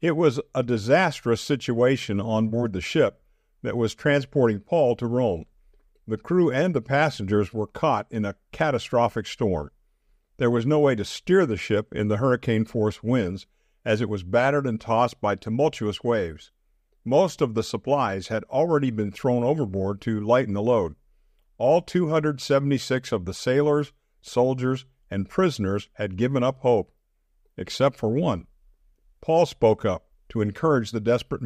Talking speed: 155 wpm